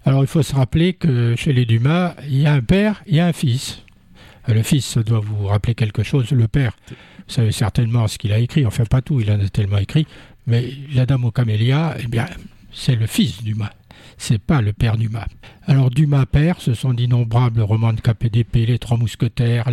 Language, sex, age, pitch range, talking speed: French, male, 60-79, 115-145 Hz, 215 wpm